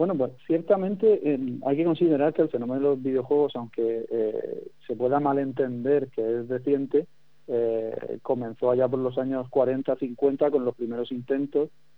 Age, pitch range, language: 40-59, 125-145 Hz, Spanish